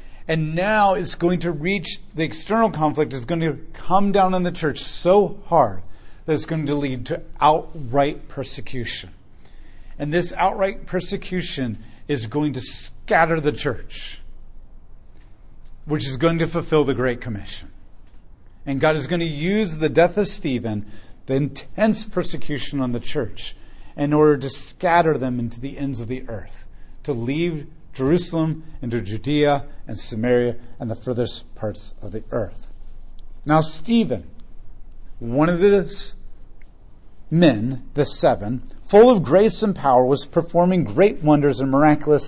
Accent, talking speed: American, 150 wpm